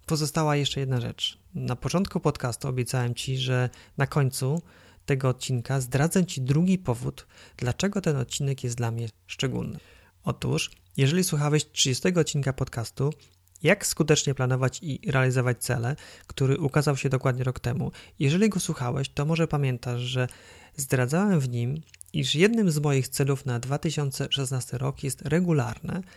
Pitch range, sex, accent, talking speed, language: 125-150 Hz, male, native, 145 wpm, Polish